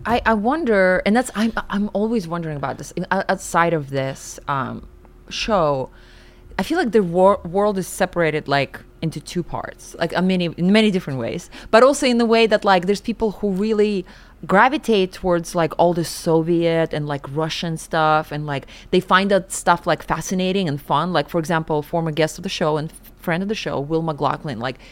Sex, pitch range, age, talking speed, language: female, 160-215 Hz, 20-39, 195 wpm, English